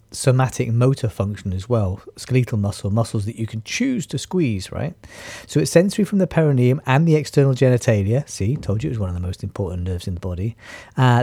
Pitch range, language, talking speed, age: 105-130 Hz, English, 215 wpm, 40-59